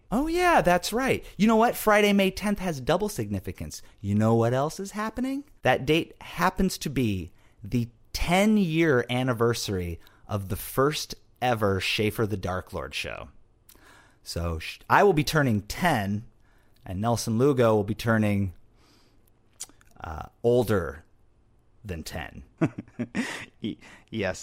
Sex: male